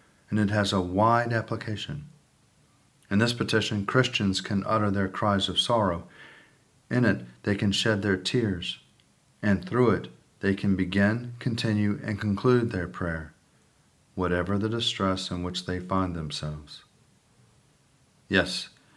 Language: English